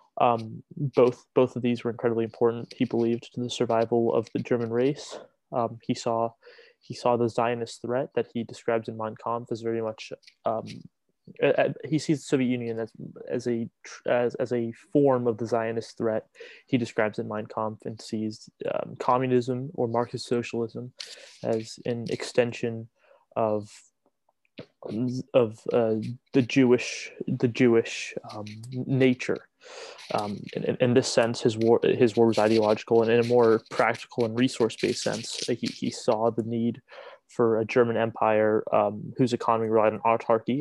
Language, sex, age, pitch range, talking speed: English, male, 20-39, 115-125 Hz, 165 wpm